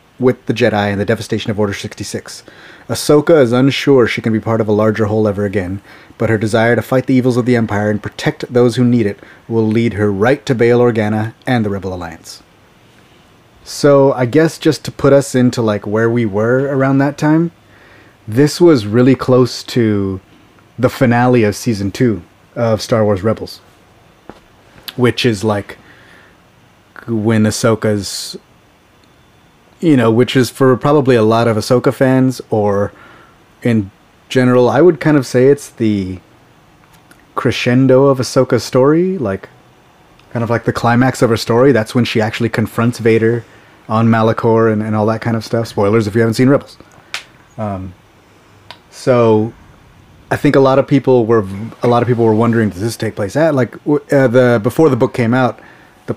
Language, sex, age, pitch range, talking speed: English, male, 30-49, 110-130 Hz, 180 wpm